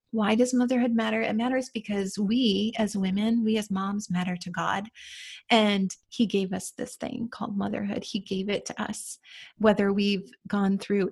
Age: 30-49